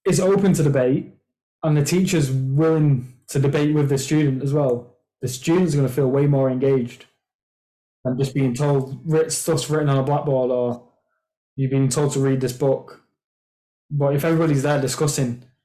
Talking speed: 175 wpm